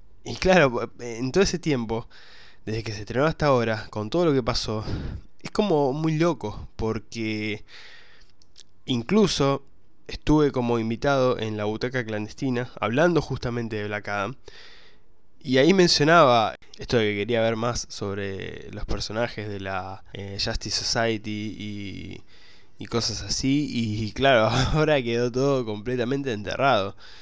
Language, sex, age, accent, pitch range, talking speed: Spanish, male, 20-39, Argentinian, 105-130 Hz, 140 wpm